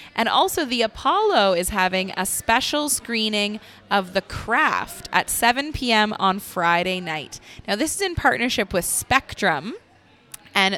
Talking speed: 145 wpm